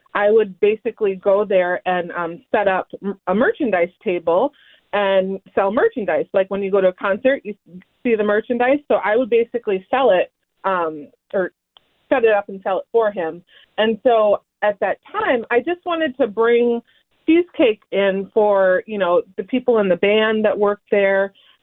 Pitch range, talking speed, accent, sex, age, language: 190-245 Hz, 180 wpm, American, female, 30-49, English